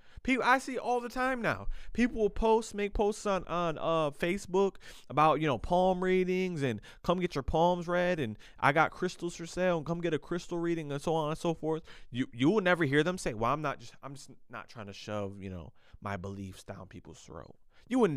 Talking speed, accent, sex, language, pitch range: 235 wpm, American, male, English, 125-180 Hz